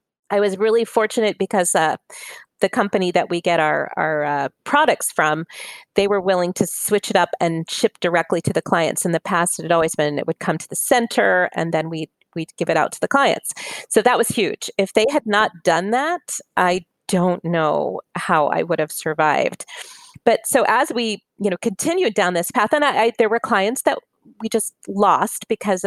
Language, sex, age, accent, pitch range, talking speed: English, female, 30-49, American, 170-225 Hz, 210 wpm